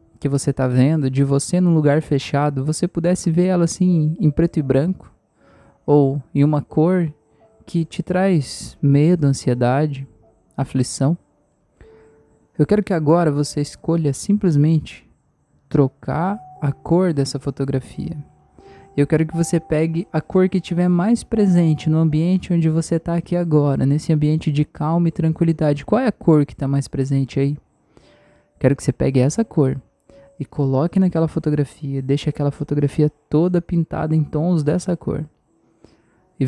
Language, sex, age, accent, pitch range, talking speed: Portuguese, male, 20-39, Brazilian, 140-175 Hz, 155 wpm